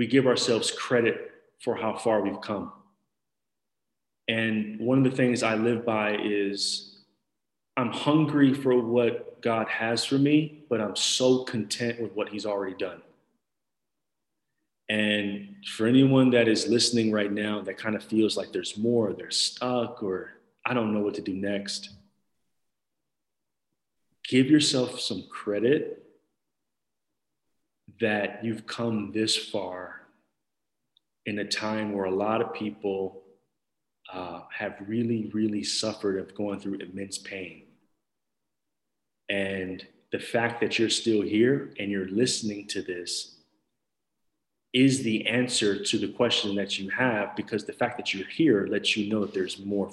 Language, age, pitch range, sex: English, 30-49, 100-120 Hz, male